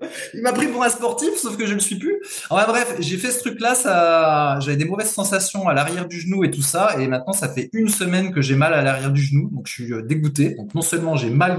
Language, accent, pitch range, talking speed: French, French, 140-190 Hz, 275 wpm